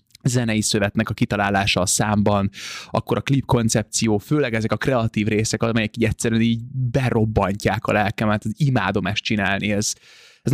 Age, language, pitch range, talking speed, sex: 20-39, Hungarian, 105-130 Hz, 160 wpm, male